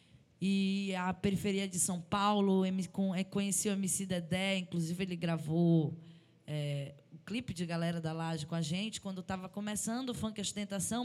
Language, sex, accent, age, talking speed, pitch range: Portuguese, female, Brazilian, 10-29, 170 wpm, 180-230 Hz